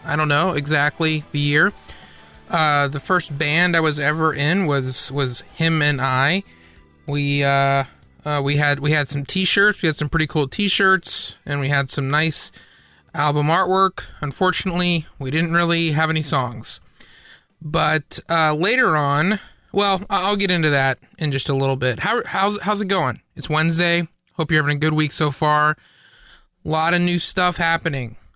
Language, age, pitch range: English, 30-49, 140-170 Hz